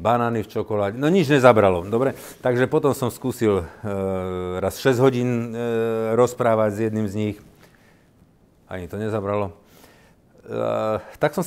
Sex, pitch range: male, 85-110 Hz